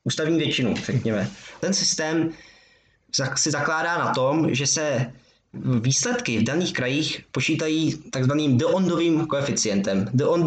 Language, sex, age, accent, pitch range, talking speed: Czech, male, 20-39, native, 125-160 Hz, 115 wpm